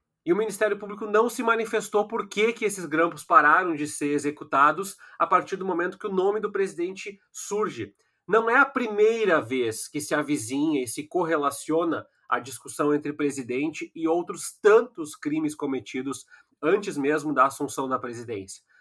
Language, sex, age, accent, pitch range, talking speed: Portuguese, male, 30-49, Brazilian, 145-235 Hz, 165 wpm